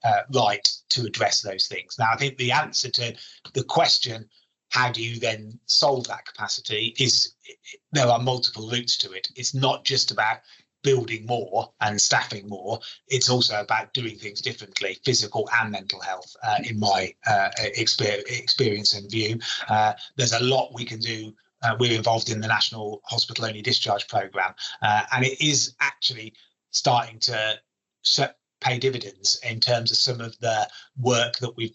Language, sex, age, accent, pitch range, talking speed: English, male, 30-49, British, 110-130 Hz, 165 wpm